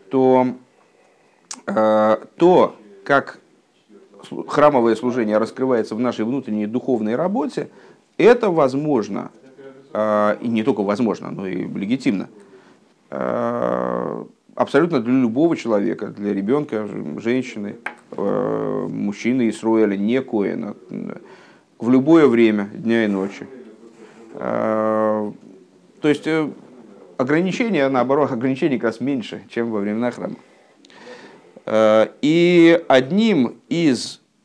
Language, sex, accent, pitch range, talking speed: Russian, male, native, 110-140 Hz, 90 wpm